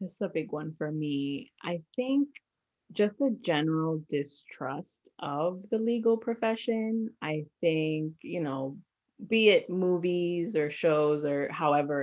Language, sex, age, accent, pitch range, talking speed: English, female, 20-39, American, 145-180 Hz, 135 wpm